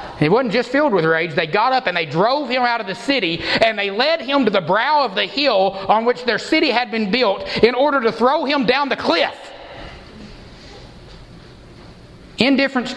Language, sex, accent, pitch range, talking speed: English, male, American, 145-210 Hz, 200 wpm